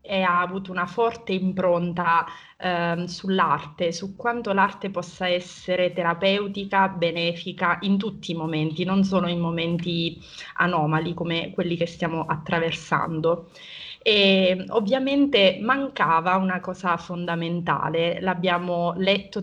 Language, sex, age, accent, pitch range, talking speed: Italian, female, 20-39, native, 170-195 Hz, 115 wpm